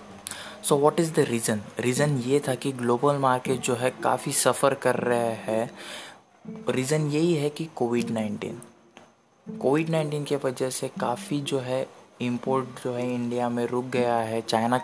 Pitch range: 115-135 Hz